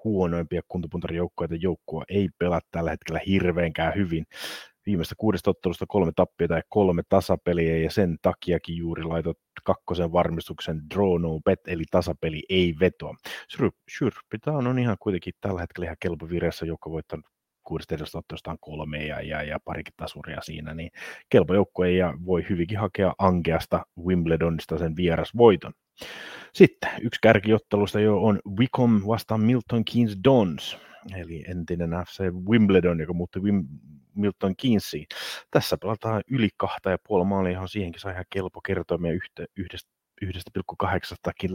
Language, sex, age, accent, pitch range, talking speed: Finnish, male, 30-49, native, 85-100 Hz, 135 wpm